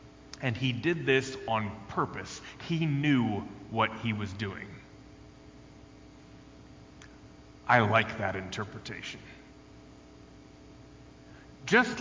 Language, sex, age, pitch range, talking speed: English, male, 30-49, 110-160 Hz, 85 wpm